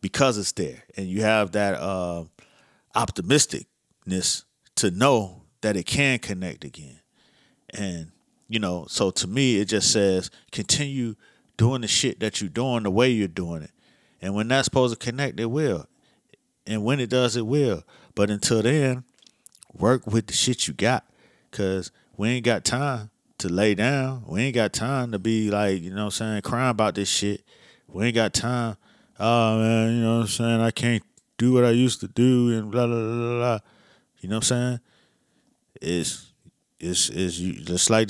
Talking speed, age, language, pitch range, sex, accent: 185 wpm, 30-49, English, 100-120 Hz, male, American